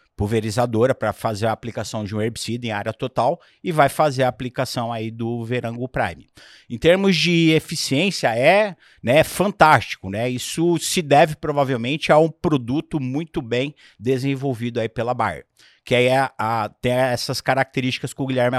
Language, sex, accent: Portuguese, male, Brazilian